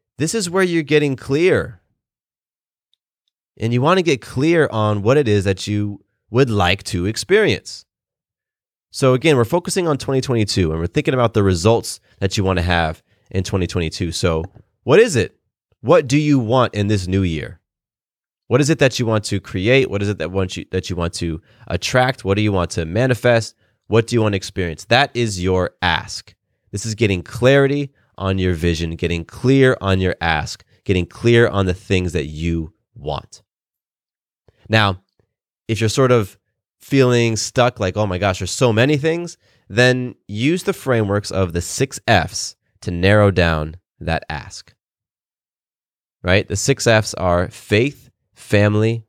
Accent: American